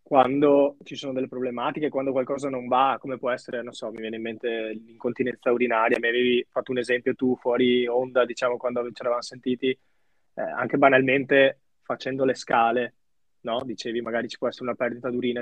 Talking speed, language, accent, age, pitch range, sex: 185 wpm, Italian, native, 20-39, 115-130 Hz, male